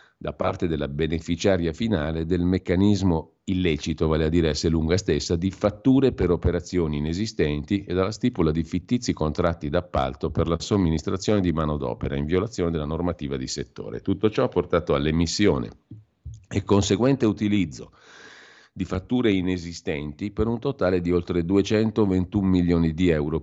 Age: 40-59